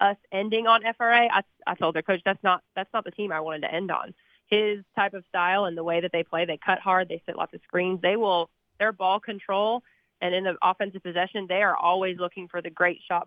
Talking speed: 255 wpm